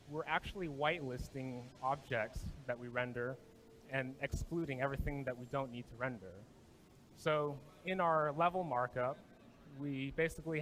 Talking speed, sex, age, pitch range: 130 wpm, male, 30-49, 125-150 Hz